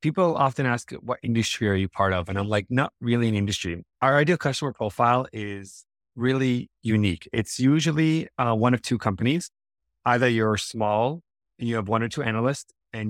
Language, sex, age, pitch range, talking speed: English, male, 30-49, 105-125 Hz, 190 wpm